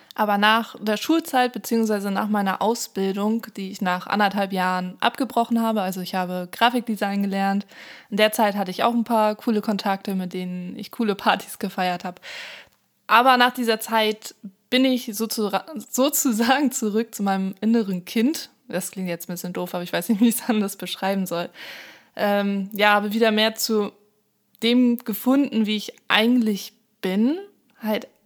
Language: German